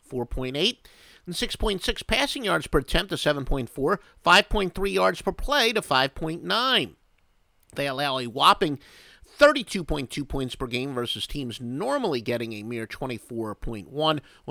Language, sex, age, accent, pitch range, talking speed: English, male, 50-69, American, 115-155 Hz, 120 wpm